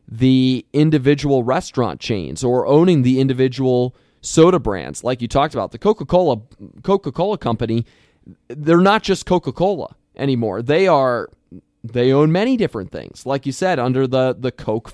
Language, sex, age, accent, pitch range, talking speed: English, male, 20-39, American, 125-165 Hz, 150 wpm